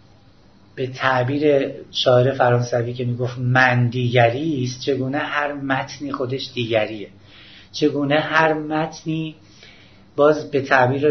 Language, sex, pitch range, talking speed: Persian, male, 120-155 Hz, 110 wpm